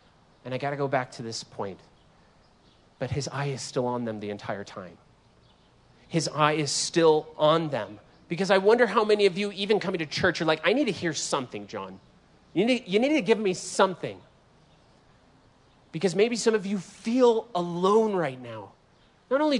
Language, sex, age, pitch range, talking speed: English, male, 30-49, 135-205 Hz, 190 wpm